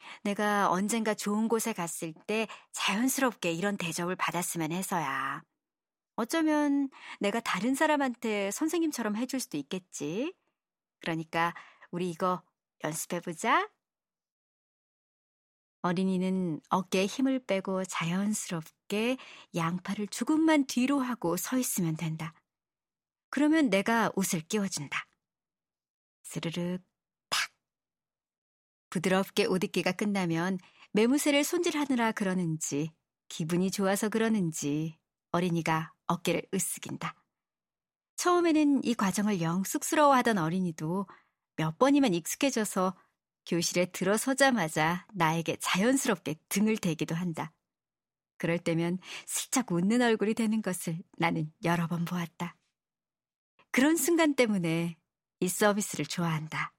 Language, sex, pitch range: Korean, male, 170-230 Hz